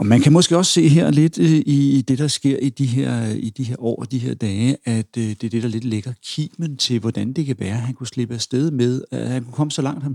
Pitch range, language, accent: 110-140 Hz, Danish, native